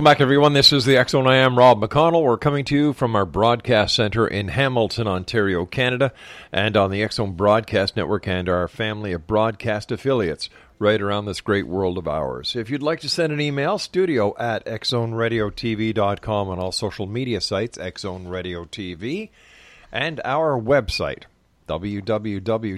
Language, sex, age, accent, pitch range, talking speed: English, male, 50-69, American, 105-130 Hz, 165 wpm